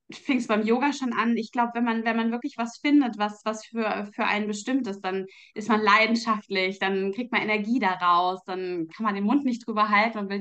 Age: 20-39